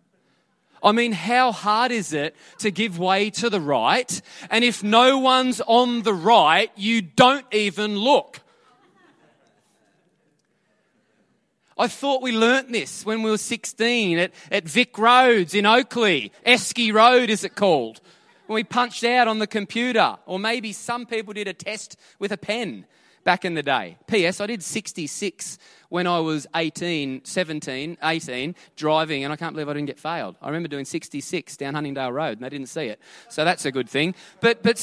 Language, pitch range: English, 170-235 Hz